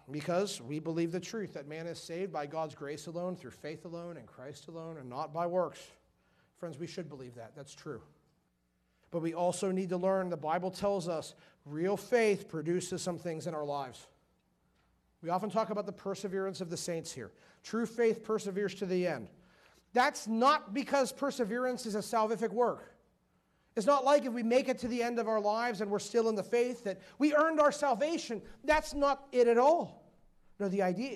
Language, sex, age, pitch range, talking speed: English, male, 40-59, 165-220 Hz, 200 wpm